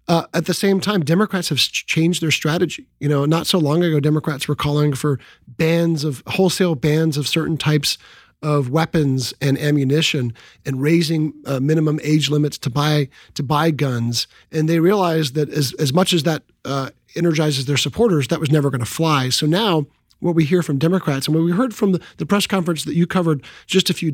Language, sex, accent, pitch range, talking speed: English, male, American, 140-170 Hz, 205 wpm